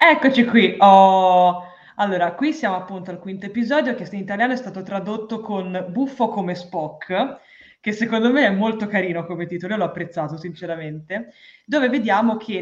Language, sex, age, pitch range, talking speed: Italian, female, 20-39, 180-255 Hz, 165 wpm